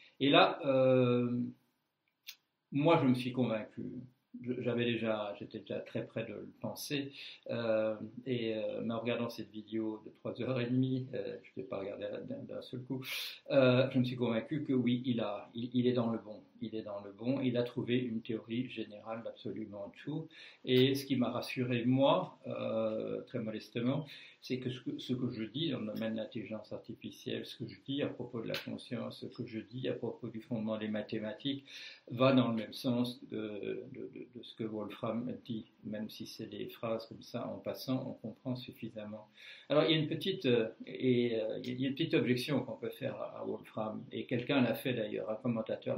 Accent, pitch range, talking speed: French, 110-130 Hz, 205 wpm